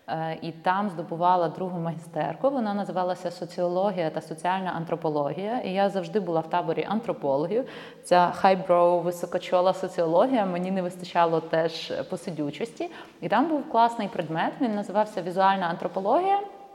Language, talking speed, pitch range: Ukrainian, 130 wpm, 175-240 Hz